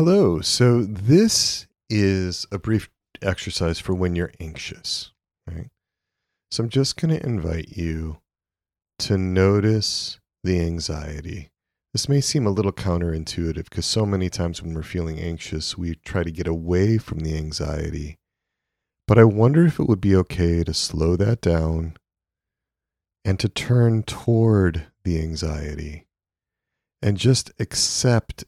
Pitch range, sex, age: 85-110 Hz, male, 40-59